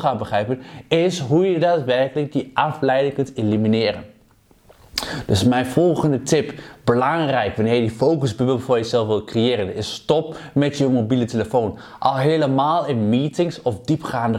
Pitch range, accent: 125-165 Hz, Dutch